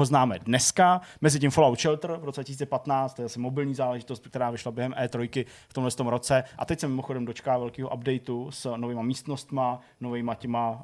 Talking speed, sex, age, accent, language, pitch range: 175 wpm, male, 20-39, native, Czech, 120-140 Hz